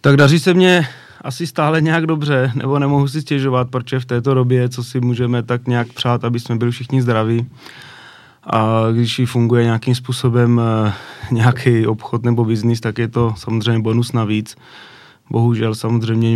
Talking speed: 165 wpm